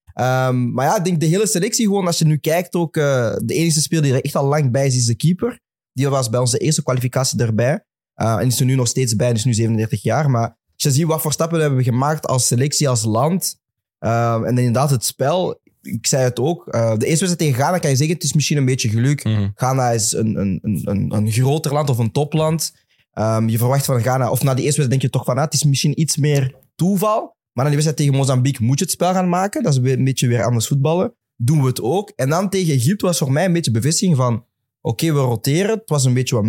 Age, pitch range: 20-39, 120-155 Hz